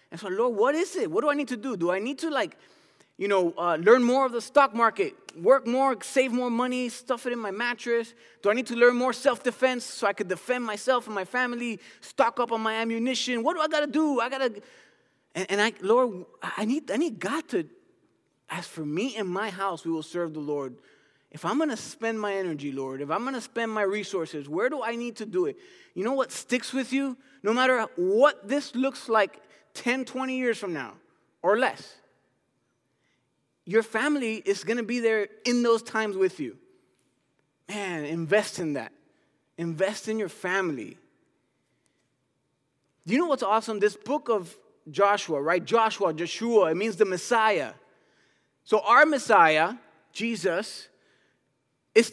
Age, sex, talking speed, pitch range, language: 20-39, male, 190 wpm, 195-260 Hz, English